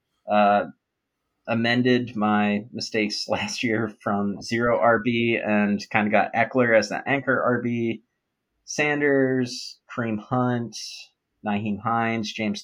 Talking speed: 115 wpm